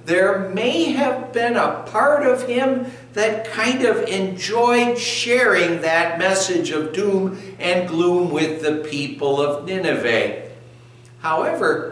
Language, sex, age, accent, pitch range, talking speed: English, male, 60-79, American, 120-170 Hz, 125 wpm